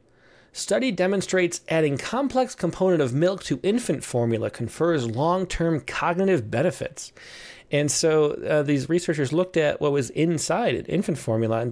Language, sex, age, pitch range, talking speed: English, male, 30-49, 125-165 Hz, 140 wpm